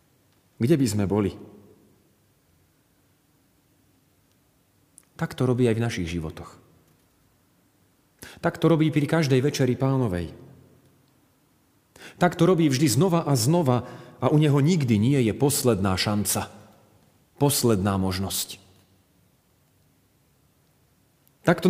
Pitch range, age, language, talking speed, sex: 105-165 Hz, 40-59, Slovak, 100 wpm, male